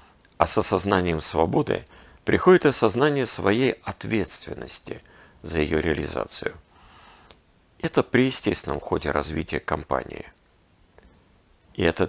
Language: Russian